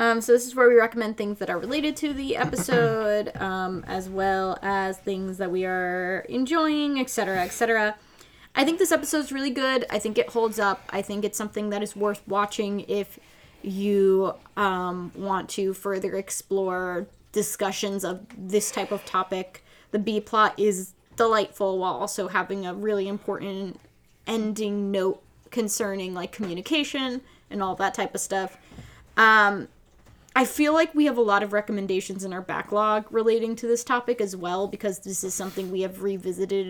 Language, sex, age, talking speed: English, female, 10-29, 175 wpm